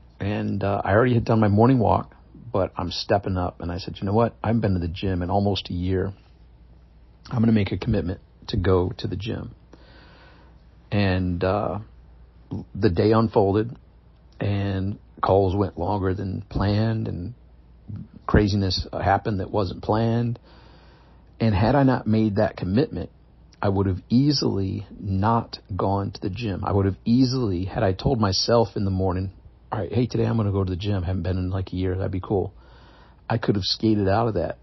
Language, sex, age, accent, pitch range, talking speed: English, male, 50-69, American, 90-110 Hz, 190 wpm